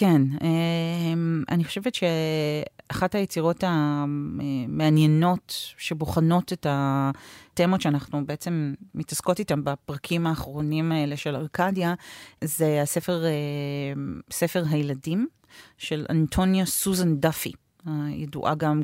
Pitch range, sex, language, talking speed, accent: 145-170 Hz, female, Hebrew, 90 wpm, native